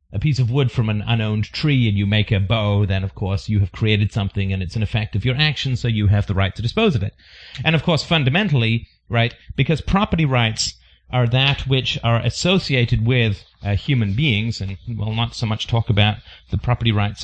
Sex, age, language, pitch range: male, 40-59, English, 105-145 Hz